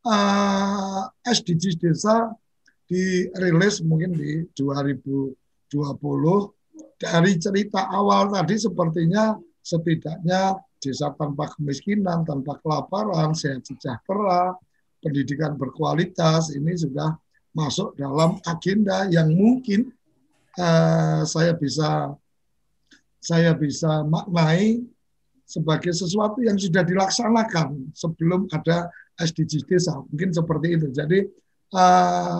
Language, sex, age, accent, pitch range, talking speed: Indonesian, male, 50-69, native, 155-190 Hz, 90 wpm